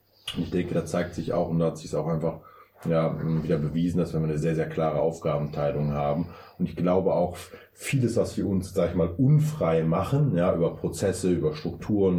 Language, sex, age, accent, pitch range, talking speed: German, male, 30-49, German, 80-90 Hz, 200 wpm